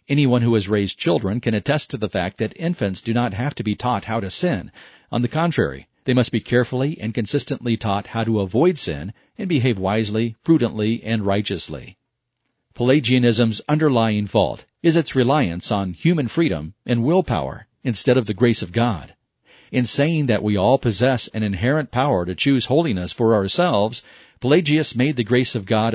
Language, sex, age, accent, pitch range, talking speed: English, male, 40-59, American, 105-130 Hz, 180 wpm